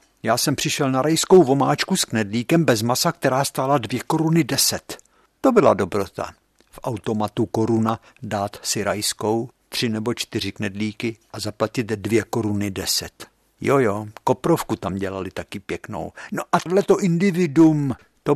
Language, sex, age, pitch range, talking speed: Czech, male, 60-79, 110-145 Hz, 145 wpm